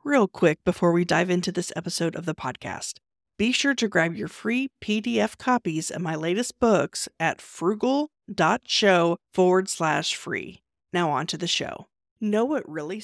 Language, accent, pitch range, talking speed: English, American, 180-235 Hz, 165 wpm